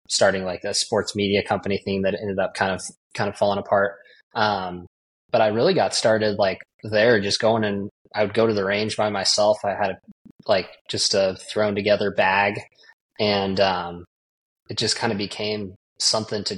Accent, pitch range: American, 95-110 Hz